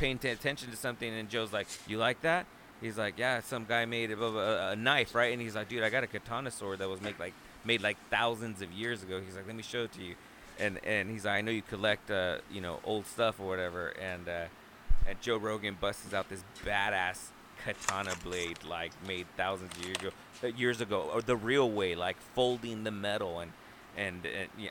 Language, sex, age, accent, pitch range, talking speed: English, male, 30-49, American, 100-130 Hz, 230 wpm